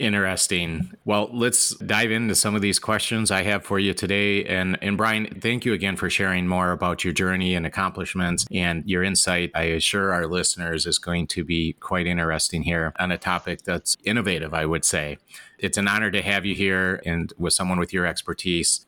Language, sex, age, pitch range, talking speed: English, male, 30-49, 85-105 Hz, 200 wpm